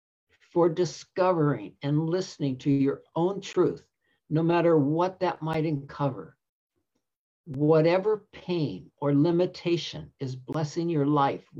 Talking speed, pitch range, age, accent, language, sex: 115 wpm, 145-175 Hz, 60-79, American, English, male